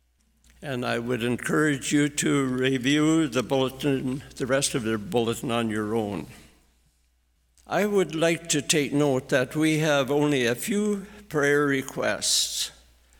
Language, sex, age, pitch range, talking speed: English, male, 60-79, 110-150 Hz, 140 wpm